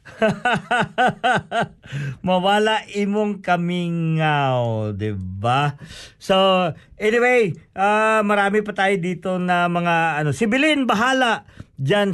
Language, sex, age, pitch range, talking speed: Filipino, male, 50-69, 155-200 Hz, 95 wpm